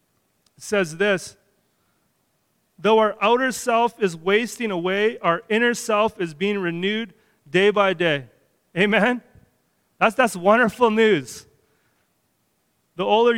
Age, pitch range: 30-49, 190-220 Hz